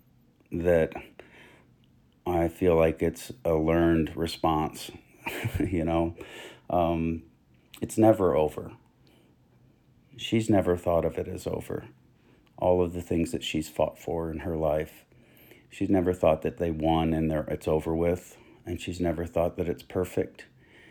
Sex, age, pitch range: male, 40-59, 80-95 Hz